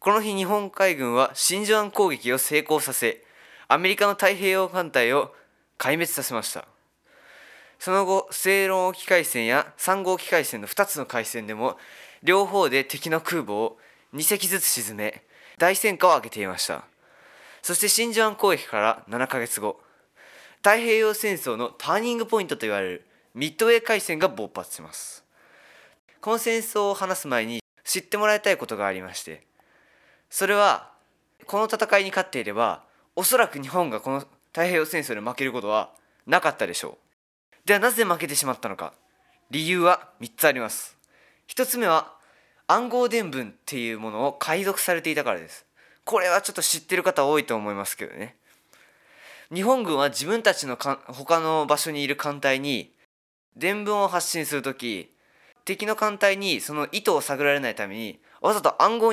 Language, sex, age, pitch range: Japanese, male, 20-39, 135-200 Hz